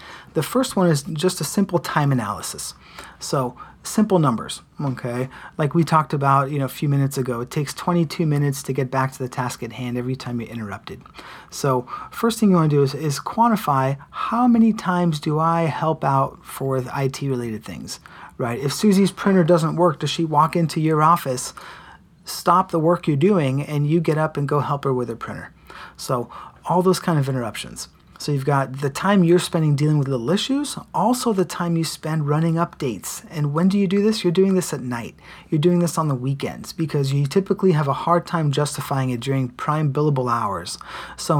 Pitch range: 135-175 Hz